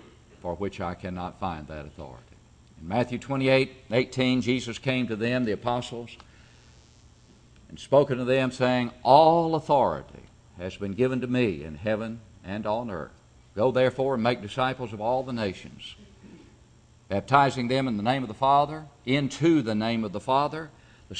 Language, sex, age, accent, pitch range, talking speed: English, male, 50-69, American, 105-140 Hz, 165 wpm